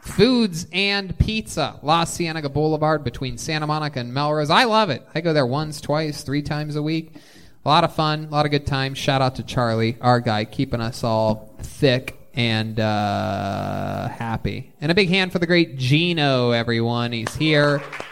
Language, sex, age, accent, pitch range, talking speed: English, male, 20-39, American, 120-170 Hz, 180 wpm